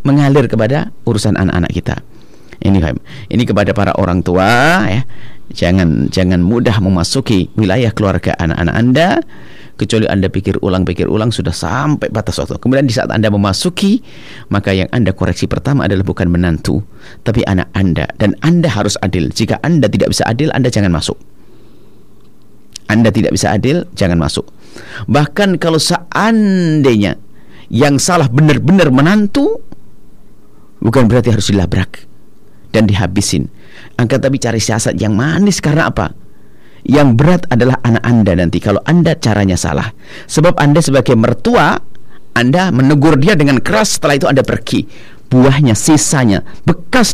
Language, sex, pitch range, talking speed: Indonesian, male, 100-145 Hz, 140 wpm